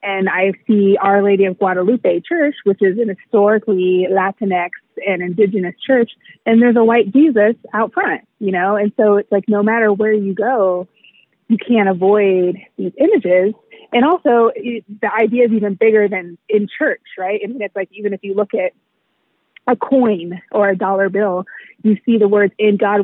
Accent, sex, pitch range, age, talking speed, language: American, female, 185-215 Hz, 30-49, 190 wpm, English